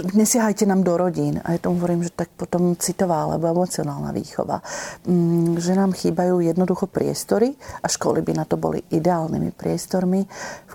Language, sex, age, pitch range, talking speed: Slovak, female, 40-59, 165-180 Hz, 160 wpm